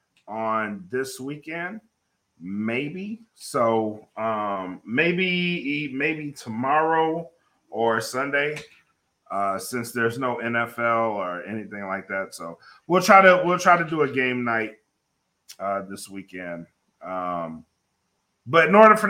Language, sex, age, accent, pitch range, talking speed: English, male, 30-49, American, 100-150 Hz, 125 wpm